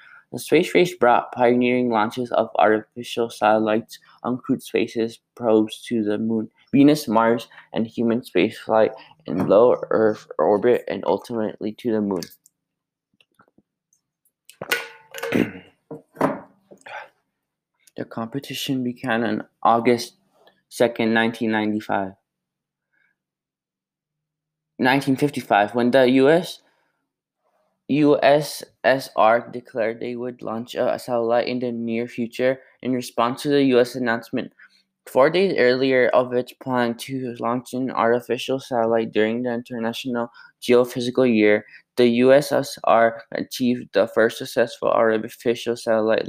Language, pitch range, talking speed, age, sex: English, 110-130 Hz, 105 wpm, 20-39, male